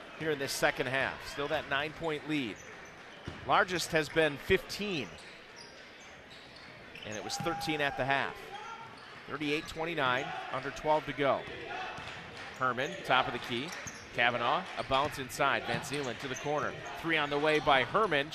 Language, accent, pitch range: English, American, 140-185 Hz